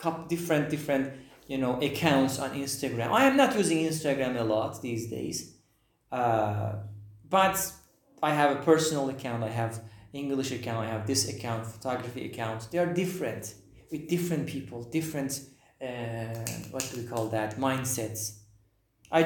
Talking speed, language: 150 wpm, English